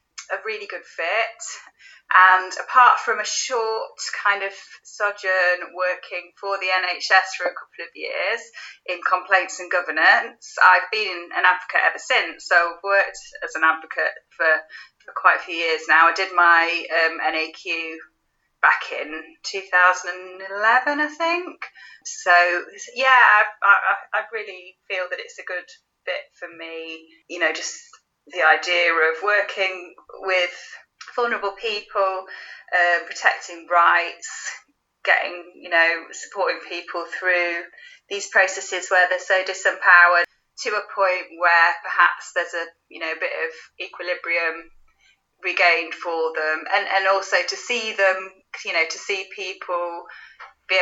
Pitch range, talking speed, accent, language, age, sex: 175-205 Hz, 145 wpm, British, English, 30-49, female